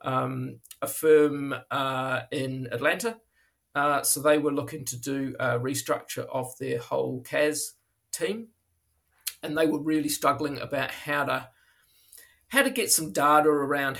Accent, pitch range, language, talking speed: Australian, 125-145 Hz, English, 140 wpm